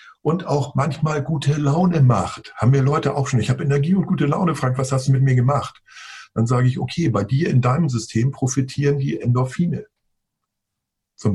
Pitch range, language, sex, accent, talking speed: 110-135 Hz, German, male, German, 195 wpm